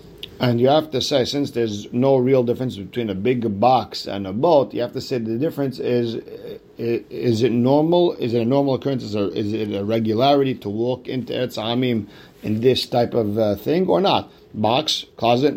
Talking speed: 215 wpm